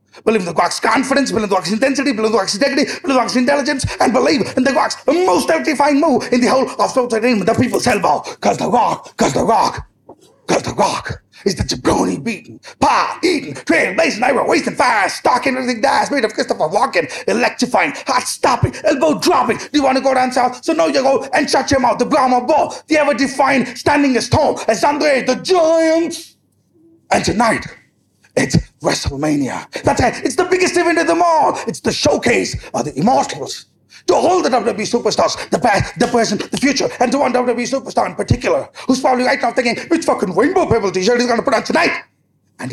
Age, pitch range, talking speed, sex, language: 30-49, 240-295 Hz, 205 wpm, male, Kannada